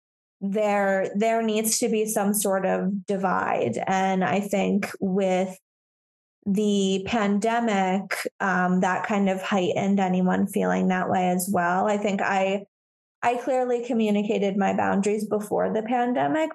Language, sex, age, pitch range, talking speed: English, female, 20-39, 195-230 Hz, 135 wpm